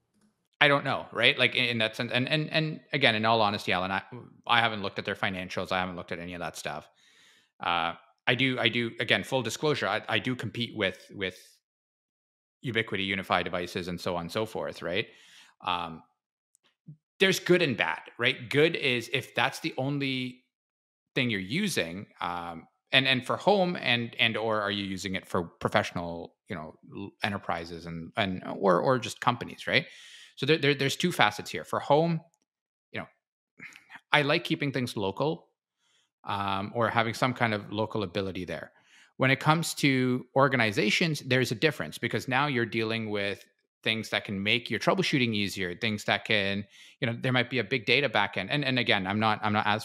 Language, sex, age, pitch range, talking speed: English, male, 30-49, 100-135 Hz, 190 wpm